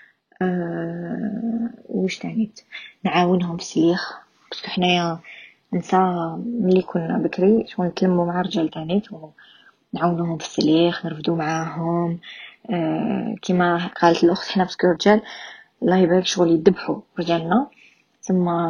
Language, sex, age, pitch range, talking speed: Arabic, female, 20-39, 165-190 Hz, 110 wpm